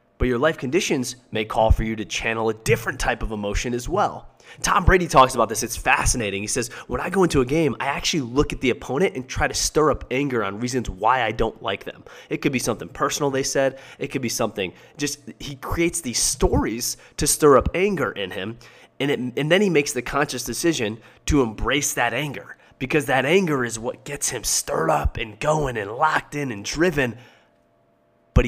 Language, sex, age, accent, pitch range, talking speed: English, male, 20-39, American, 110-140 Hz, 215 wpm